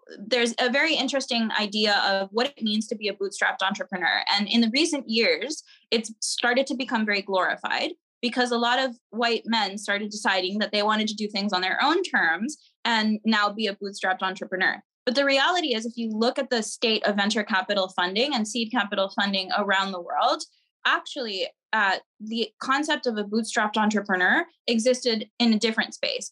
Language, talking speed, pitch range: English, 190 wpm, 205-245 Hz